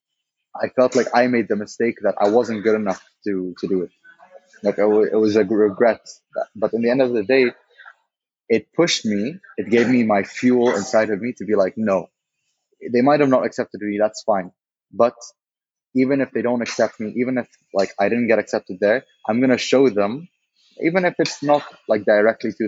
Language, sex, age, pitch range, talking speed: English, male, 20-39, 105-135 Hz, 205 wpm